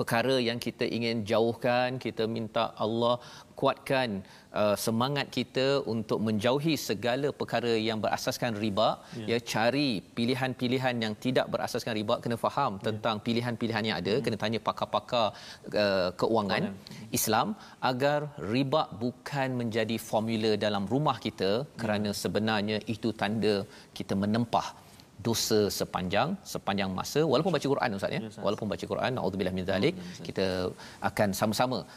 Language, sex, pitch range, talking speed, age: Malayalam, male, 105-125 Hz, 125 wpm, 40-59